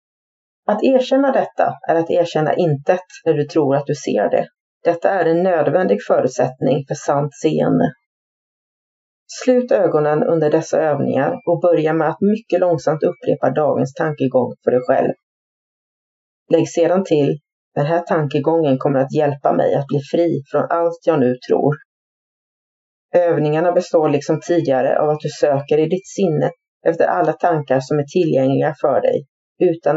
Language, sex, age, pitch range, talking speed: Swedish, female, 30-49, 150-180 Hz, 155 wpm